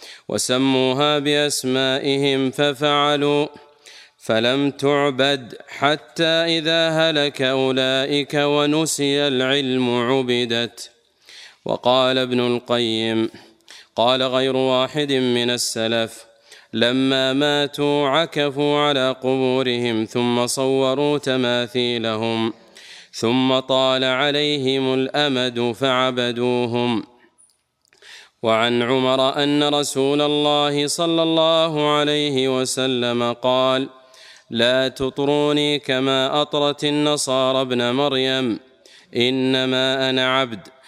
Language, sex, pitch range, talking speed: Arabic, male, 120-145 Hz, 80 wpm